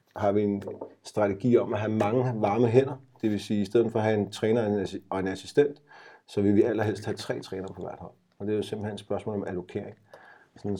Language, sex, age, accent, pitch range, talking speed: English, male, 30-49, Danish, 100-115 Hz, 245 wpm